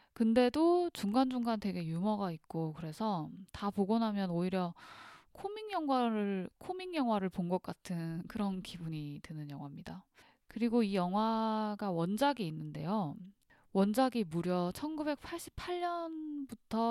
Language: Korean